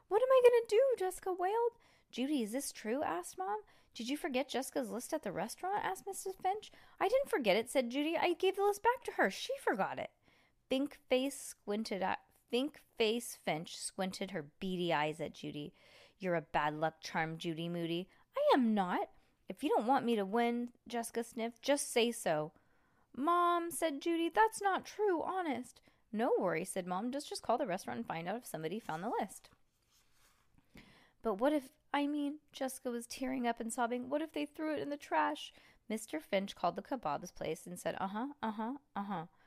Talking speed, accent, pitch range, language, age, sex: 200 wpm, American, 200-305 Hz, English, 20-39, female